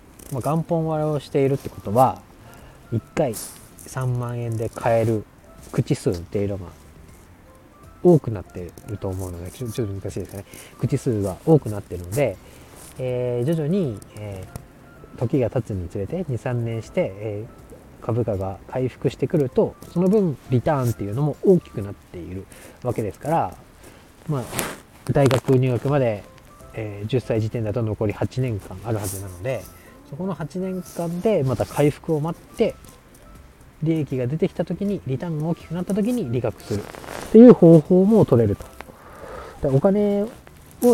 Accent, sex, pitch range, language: native, male, 105-160 Hz, Japanese